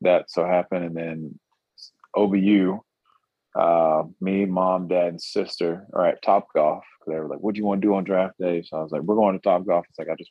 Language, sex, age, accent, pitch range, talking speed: English, male, 30-49, American, 90-105 Hz, 240 wpm